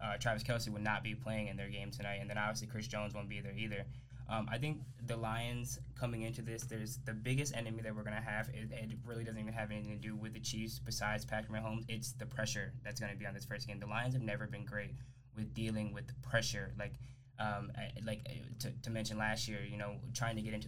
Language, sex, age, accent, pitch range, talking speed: English, male, 10-29, American, 110-125 Hz, 255 wpm